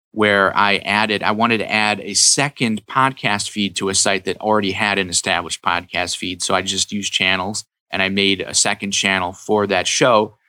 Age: 30-49